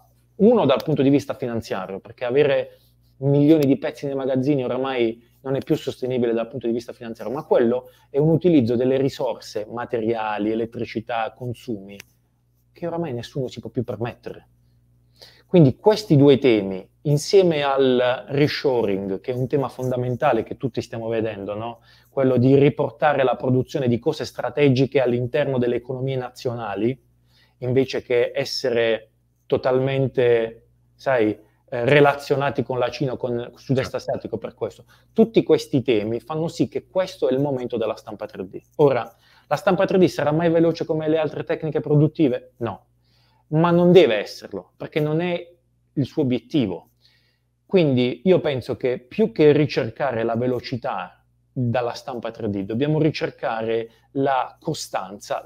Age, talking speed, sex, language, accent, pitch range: 30-49, 145 wpm, male, Italian, native, 115-145 Hz